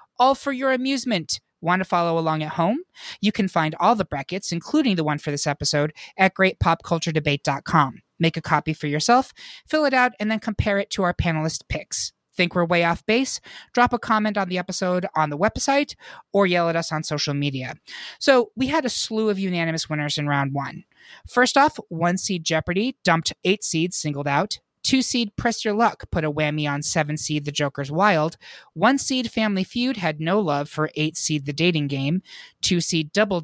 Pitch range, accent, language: 155-215 Hz, American, English